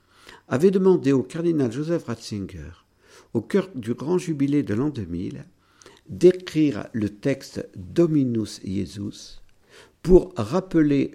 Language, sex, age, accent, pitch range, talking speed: French, male, 50-69, French, 95-150 Hz, 115 wpm